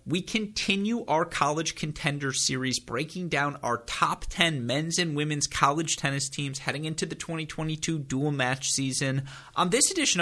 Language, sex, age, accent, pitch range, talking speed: English, male, 30-49, American, 120-155 Hz, 160 wpm